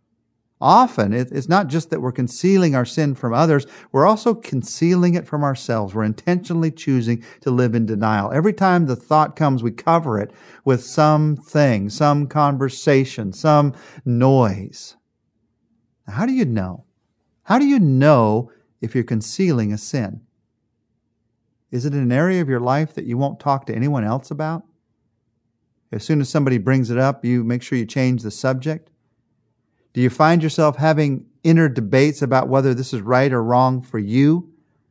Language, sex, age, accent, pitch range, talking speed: English, male, 50-69, American, 115-145 Hz, 165 wpm